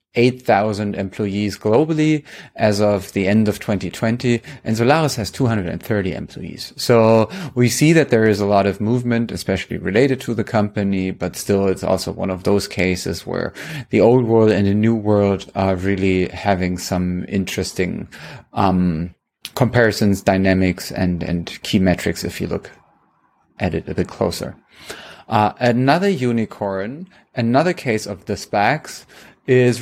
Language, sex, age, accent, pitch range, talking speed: English, male, 30-49, German, 95-120 Hz, 150 wpm